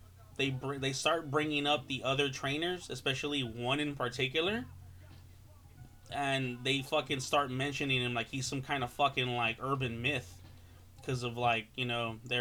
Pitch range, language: 120-145 Hz, English